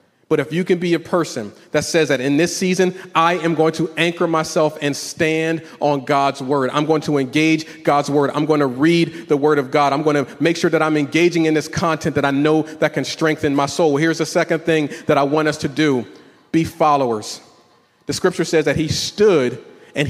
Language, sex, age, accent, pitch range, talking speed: English, male, 40-59, American, 145-175 Hz, 230 wpm